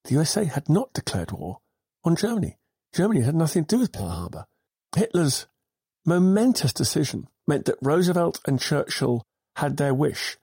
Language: English